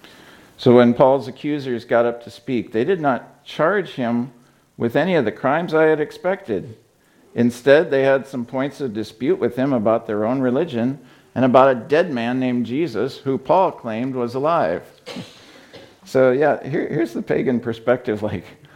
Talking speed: 170 wpm